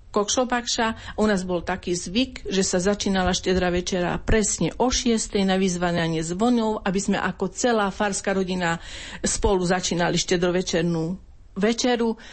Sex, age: female, 40-59